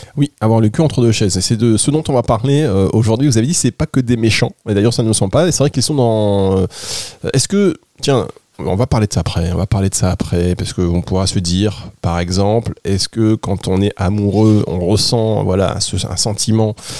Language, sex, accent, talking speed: French, male, French, 250 wpm